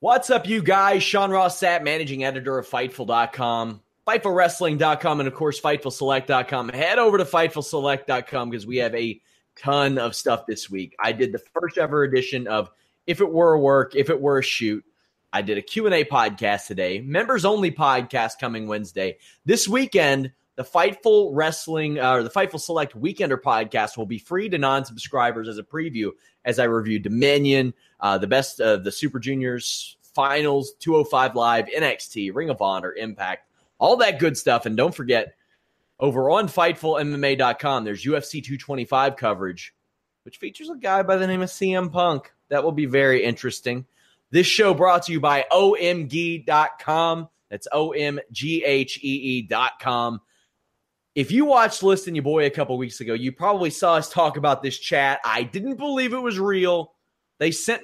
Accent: American